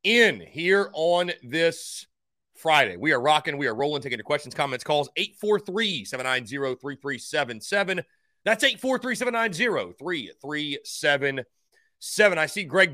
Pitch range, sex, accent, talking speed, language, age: 140-190 Hz, male, American, 120 wpm, English, 30-49